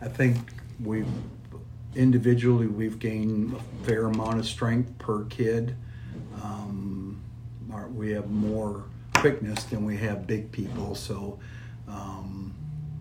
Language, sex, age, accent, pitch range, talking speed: English, male, 60-79, American, 105-120 Hz, 120 wpm